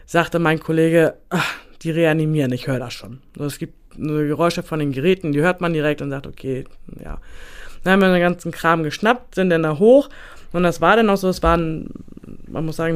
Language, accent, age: German, German, 20-39